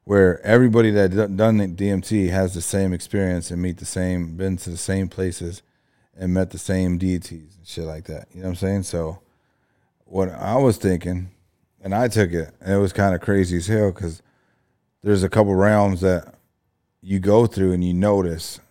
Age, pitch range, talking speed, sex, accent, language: 30-49, 90-110 Hz, 200 wpm, male, American, English